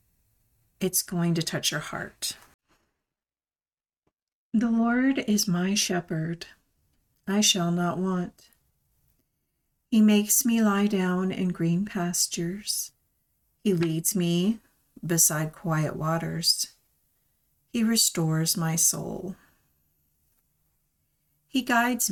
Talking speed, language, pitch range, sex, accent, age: 95 wpm, English, 155-195 Hz, female, American, 50-69